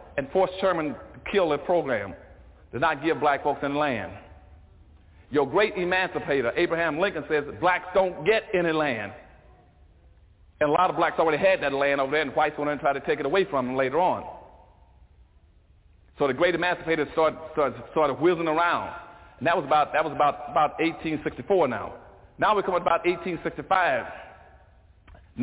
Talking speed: 175 wpm